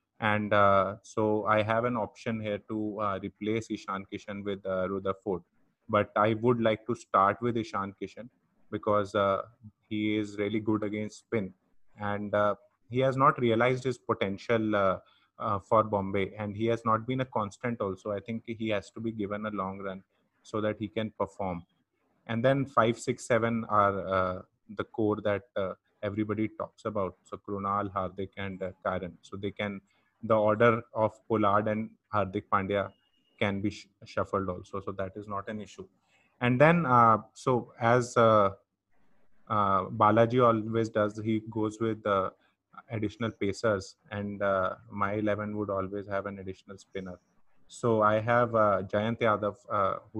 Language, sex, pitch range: English, male, 100-115 Hz